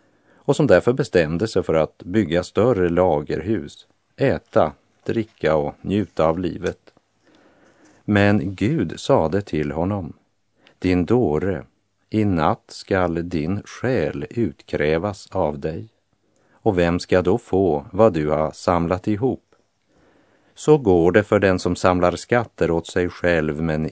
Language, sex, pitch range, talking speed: Polish, male, 80-100 Hz, 135 wpm